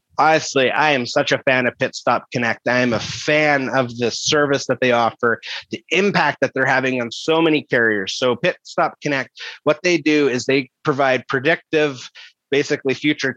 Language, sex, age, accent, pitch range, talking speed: English, male, 30-49, American, 120-150 Hz, 190 wpm